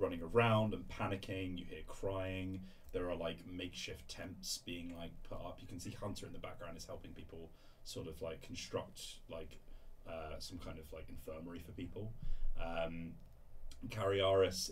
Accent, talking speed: British, 165 wpm